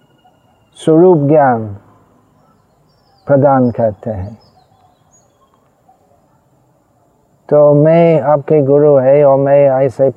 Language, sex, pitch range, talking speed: Hindi, male, 135-170 Hz, 85 wpm